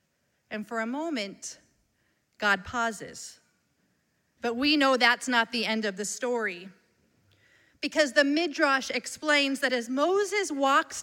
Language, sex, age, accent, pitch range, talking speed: English, female, 40-59, American, 245-310 Hz, 130 wpm